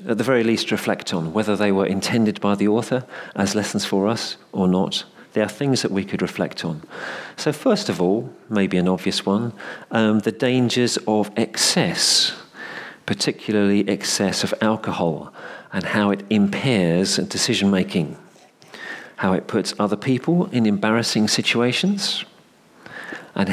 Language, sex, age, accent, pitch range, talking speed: English, male, 40-59, British, 95-110 Hz, 150 wpm